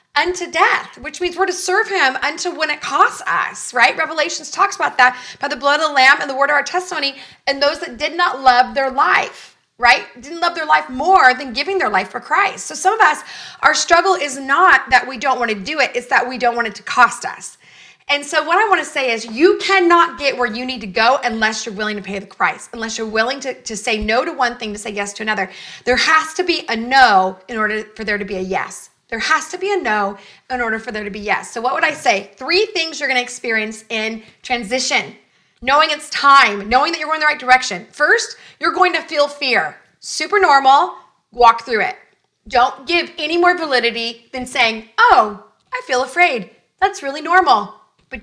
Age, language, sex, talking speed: 30-49, English, female, 235 wpm